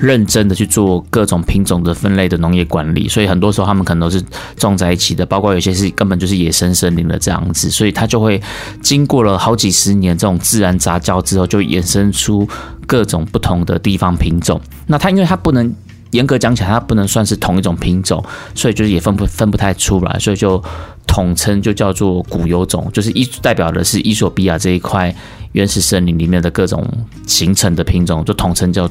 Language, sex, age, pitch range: Chinese, male, 30-49, 90-110 Hz